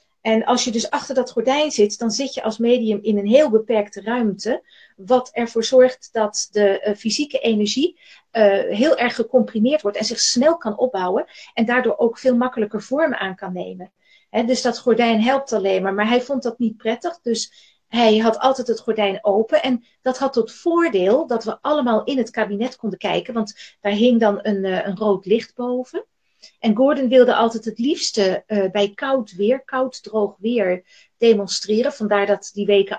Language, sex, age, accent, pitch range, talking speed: Dutch, female, 40-59, Dutch, 215-255 Hz, 190 wpm